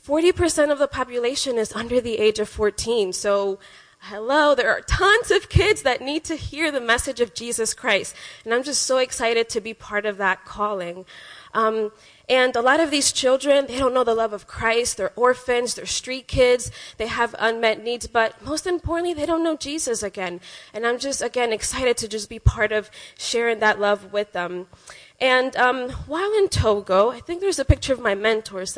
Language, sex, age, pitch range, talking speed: English, female, 20-39, 210-260 Hz, 200 wpm